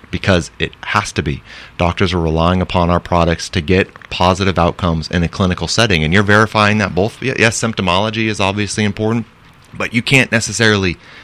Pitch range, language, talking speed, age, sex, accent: 85-110 Hz, English, 175 wpm, 30-49, male, American